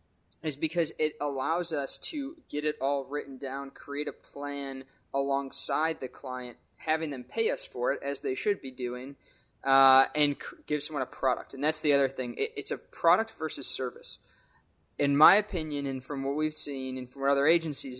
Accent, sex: American, male